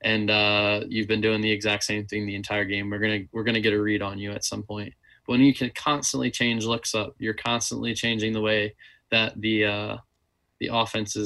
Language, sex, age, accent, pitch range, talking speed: English, male, 20-39, American, 105-115 Hz, 225 wpm